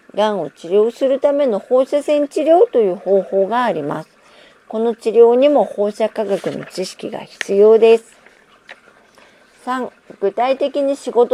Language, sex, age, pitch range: Japanese, female, 50-69, 195-270 Hz